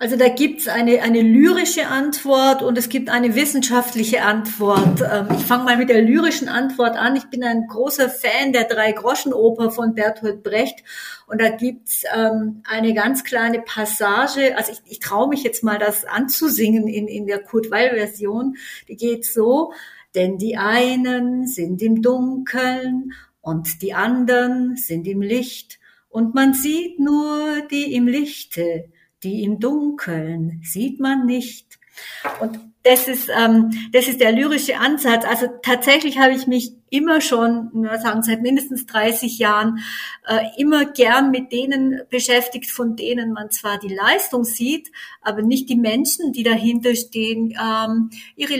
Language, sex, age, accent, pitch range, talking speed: German, female, 50-69, German, 220-265 Hz, 155 wpm